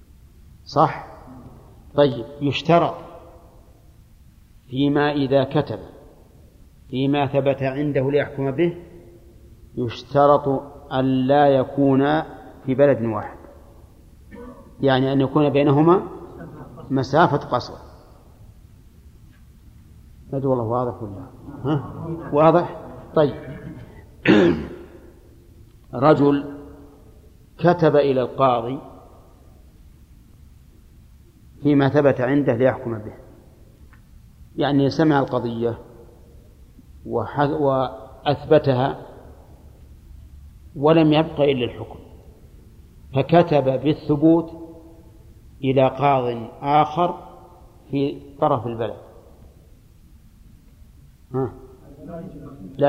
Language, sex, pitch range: Arabic, male, 110-145 Hz